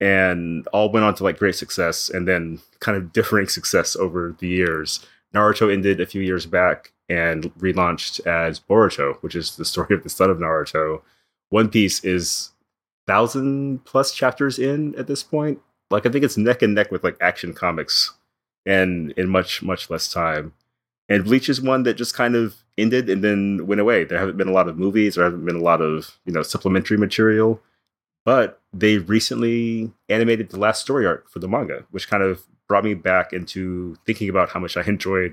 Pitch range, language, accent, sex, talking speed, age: 90-110 Hz, English, American, male, 200 wpm, 30-49